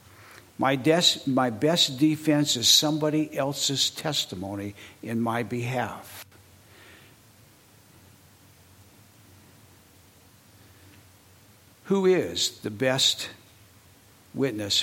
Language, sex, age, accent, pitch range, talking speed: English, male, 60-79, American, 100-135 Hz, 60 wpm